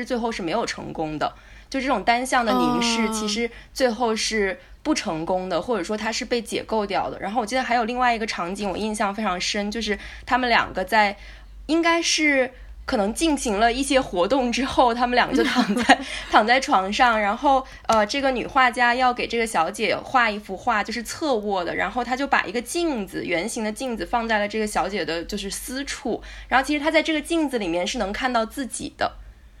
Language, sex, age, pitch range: English, female, 20-39, 210-260 Hz